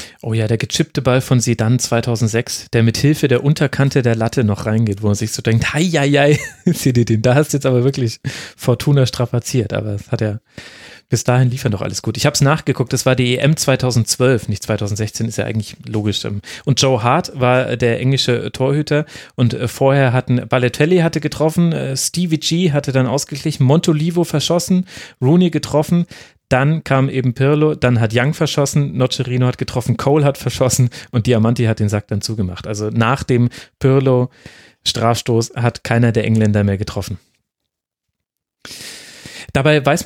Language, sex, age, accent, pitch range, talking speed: German, male, 30-49, German, 115-145 Hz, 170 wpm